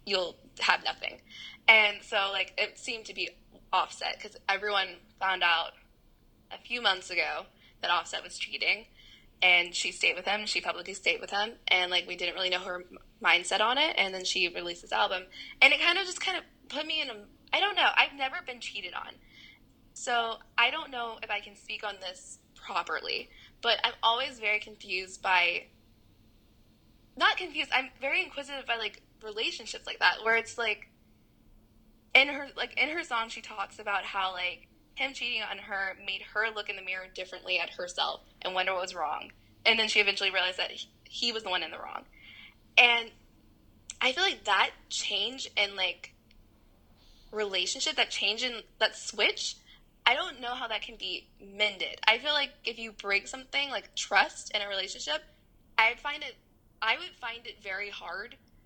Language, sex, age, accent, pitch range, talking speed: English, female, 10-29, American, 185-255 Hz, 190 wpm